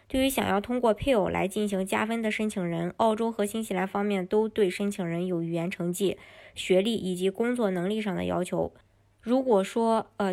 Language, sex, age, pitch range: Chinese, male, 20-39, 180-215 Hz